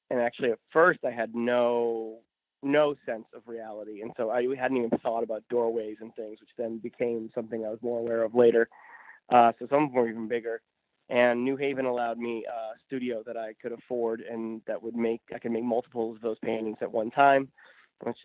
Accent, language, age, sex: American, English, 20-39, male